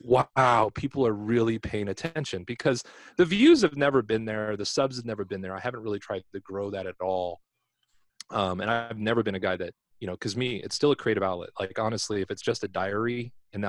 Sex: male